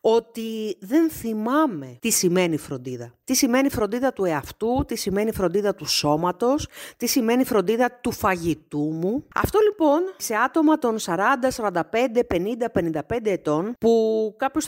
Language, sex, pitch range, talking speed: Greek, female, 175-240 Hz, 140 wpm